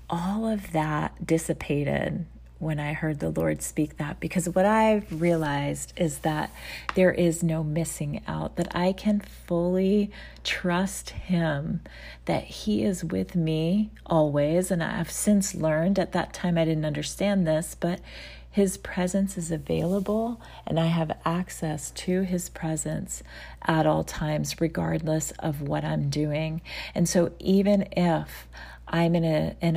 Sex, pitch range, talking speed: female, 155-180 Hz, 150 wpm